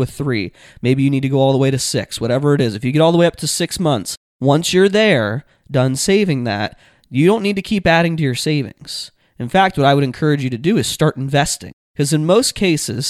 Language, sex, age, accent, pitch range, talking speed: English, male, 20-39, American, 115-145 Hz, 260 wpm